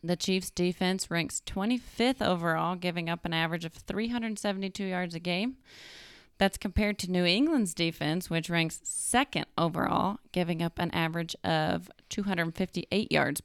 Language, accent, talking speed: English, American, 145 wpm